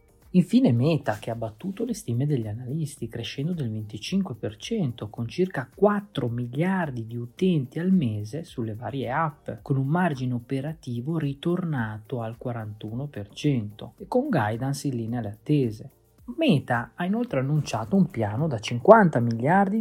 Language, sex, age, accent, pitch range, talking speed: Italian, male, 30-49, native, 120-165 Hz, 140 wpm